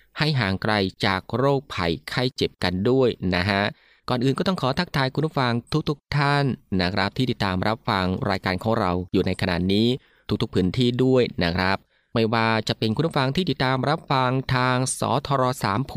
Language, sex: Thai, male